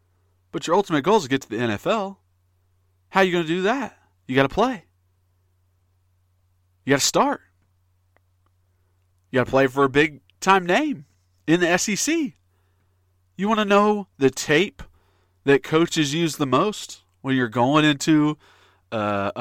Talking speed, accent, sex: 165 wpm, American, male